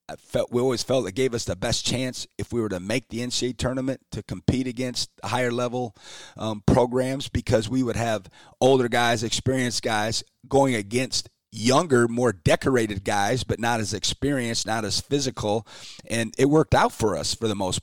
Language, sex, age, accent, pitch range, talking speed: English, male, 30-49, American, 100-125 Hz, 190 wpm